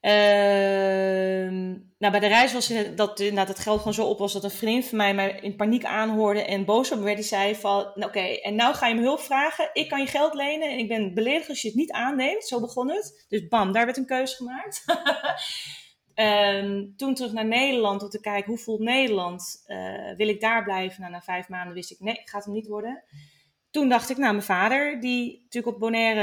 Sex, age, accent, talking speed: female, 30-49, Dutch, 240 wpm